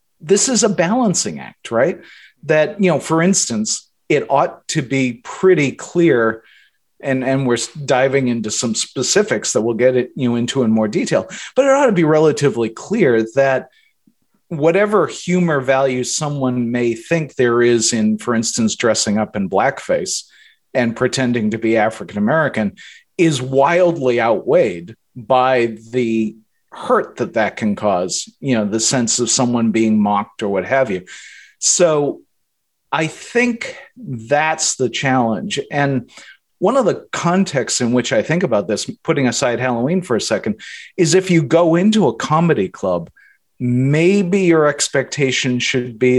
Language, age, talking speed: English, 40-59, 155 wpm